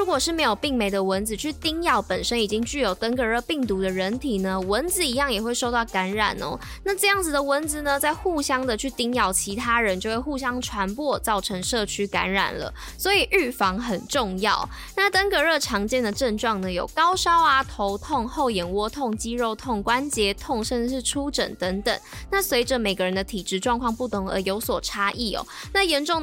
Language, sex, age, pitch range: Chinese, female, 10-29, 200-270 Hz